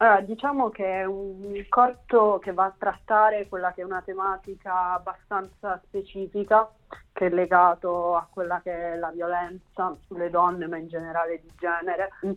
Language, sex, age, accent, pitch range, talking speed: Italian, female, 30-49, native, 175-200 Hz, 160 wpm